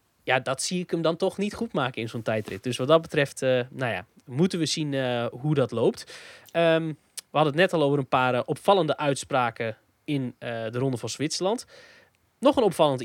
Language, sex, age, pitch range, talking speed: Dutch, male, 20-39, 125-165 Hz, 215 wpm